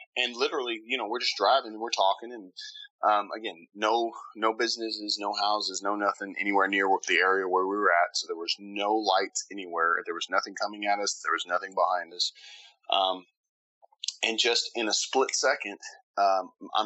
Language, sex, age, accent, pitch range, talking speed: English, male, 30-49, American, 100-145 Hz, 190 wpm